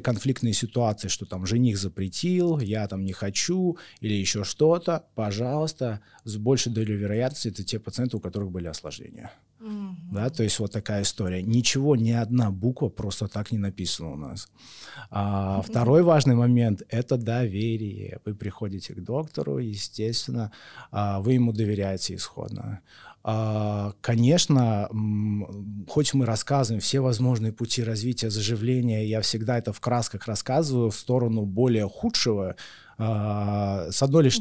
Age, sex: 20-39, male